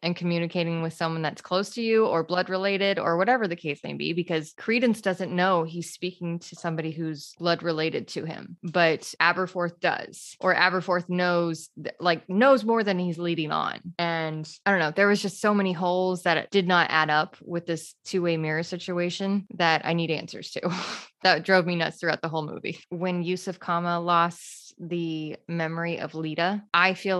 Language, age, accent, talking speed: English, 20-39, American, 190 wpm